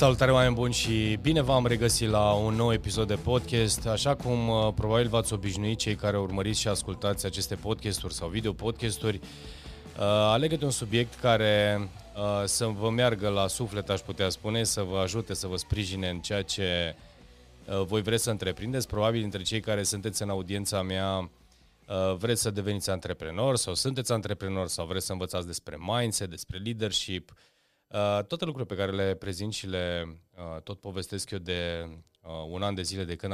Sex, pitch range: male, 95-110 Hz